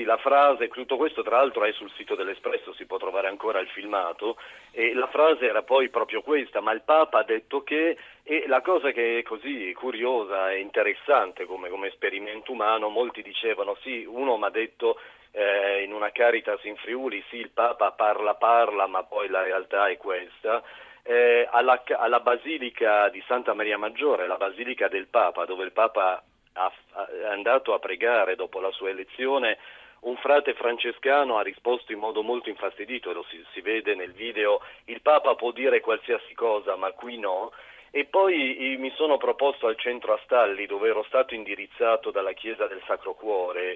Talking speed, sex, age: 180 wpm, male, 40-59